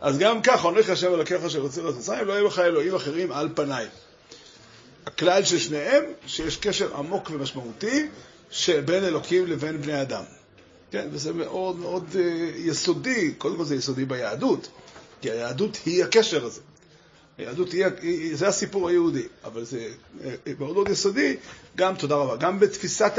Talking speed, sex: 150 wpm, male